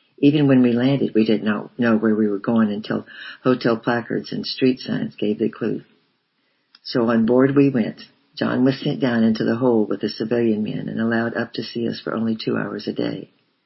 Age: 60-79